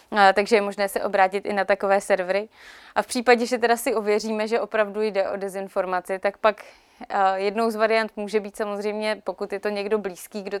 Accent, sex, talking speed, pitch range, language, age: native, female, 200 wpm, 200-215 Hz, Czech, 20-39